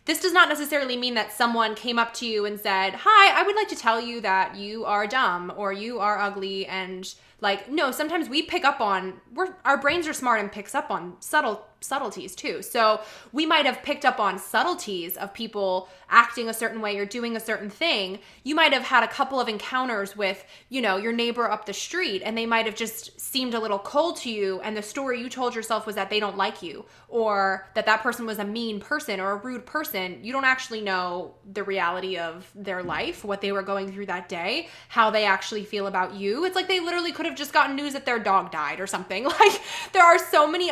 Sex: female